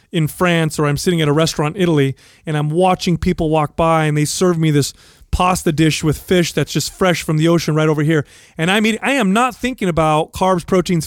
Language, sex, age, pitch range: English, male, 30-49, 160-195 Hz